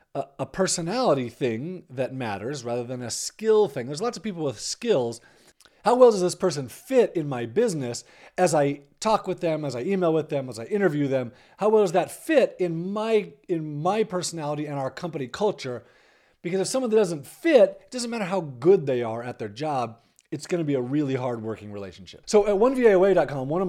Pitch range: 125-185 Hz